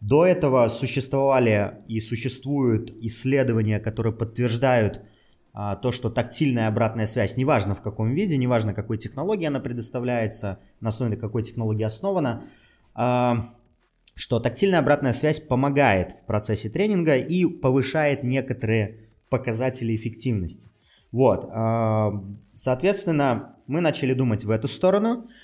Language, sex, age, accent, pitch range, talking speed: Russian, male, 20-39, native, 110-135 Hz, 120 wpm